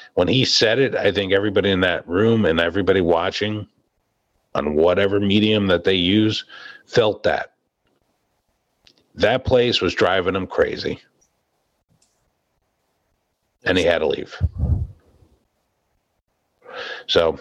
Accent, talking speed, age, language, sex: American, 115 wpm, 50-69, English, male